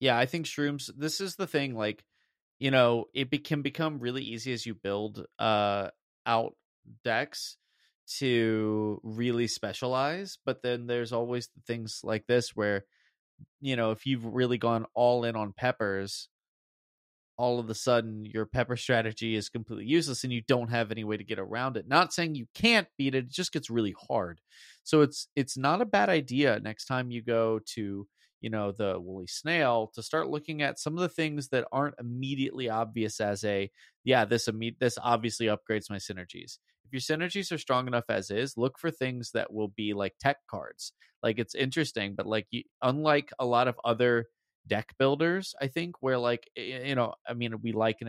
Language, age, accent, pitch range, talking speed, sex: English, 30-49, American, 110-140 Hz, 190 wpm, male